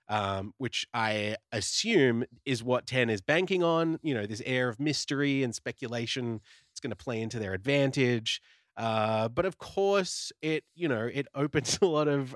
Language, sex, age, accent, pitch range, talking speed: English, male, 20-39, Australian, 115-150 Hz, 180 wpm